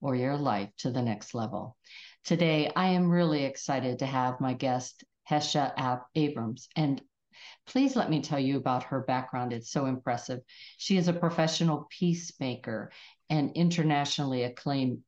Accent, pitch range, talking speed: American, 130-170 Hz, 150 wpm